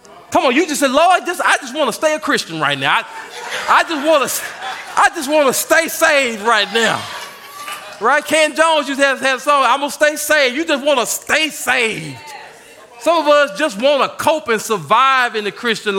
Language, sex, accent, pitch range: English, male, American, 260-335 Hz